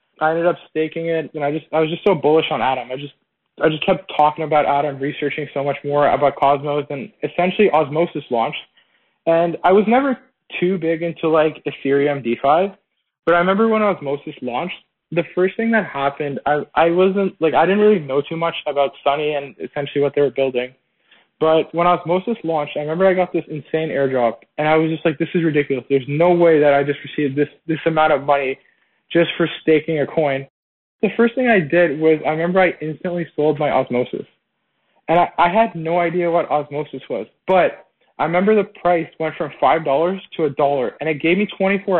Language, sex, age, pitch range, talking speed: English, male, 20-39, 145-180 Hz, 210 wpm